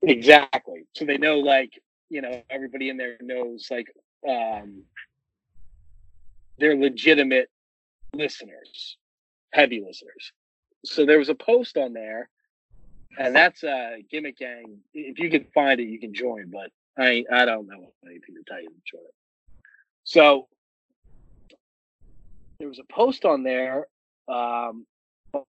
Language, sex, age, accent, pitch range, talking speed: English, male, 30-49, American, 115-150 Hz, 140 wpm